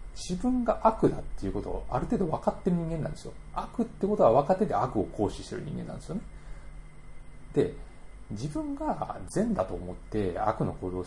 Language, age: Japanese, 30-49